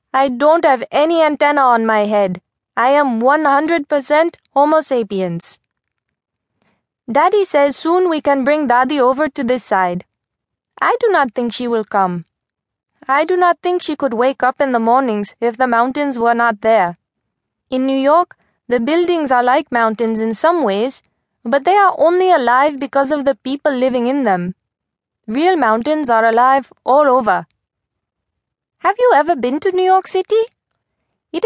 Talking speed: 165 wpm